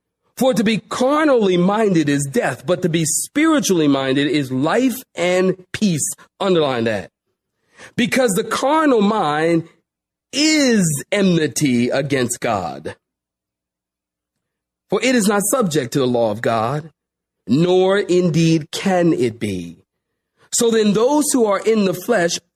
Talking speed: 130 wpm